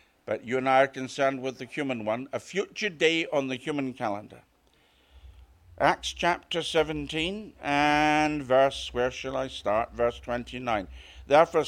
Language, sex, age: English, male, 60-79